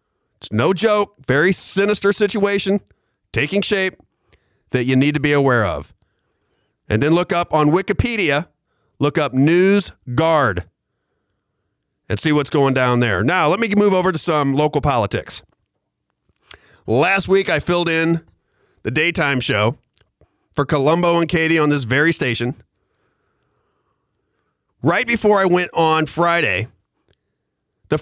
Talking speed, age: 135 wpm, 40-59